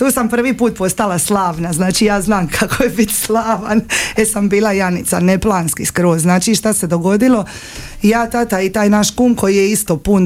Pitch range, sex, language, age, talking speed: 180-220 Hz, female, Croatian, 30-49, 195 wpm